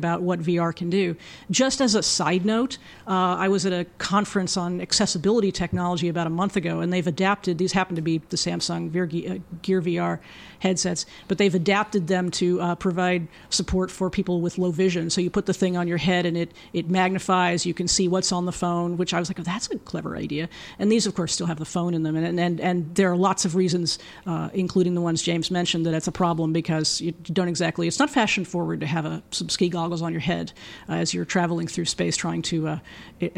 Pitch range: 165-185 Hz